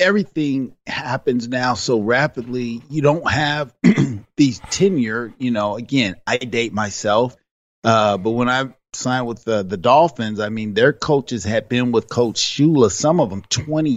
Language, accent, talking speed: English, American, 165 wpm